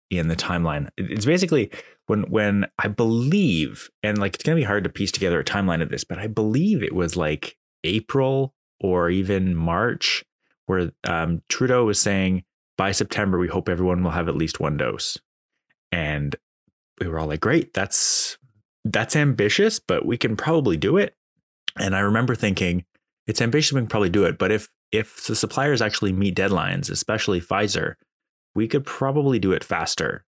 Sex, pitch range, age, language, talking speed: male, 90-115 Hz, 20-39, English, 180 wpm